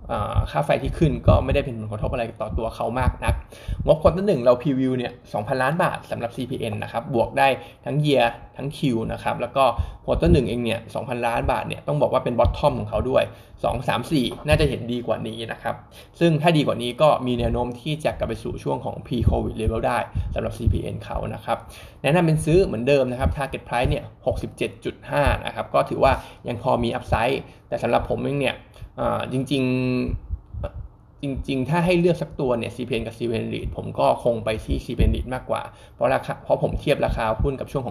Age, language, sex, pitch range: 20-39, Thai, male, 110-140 Hz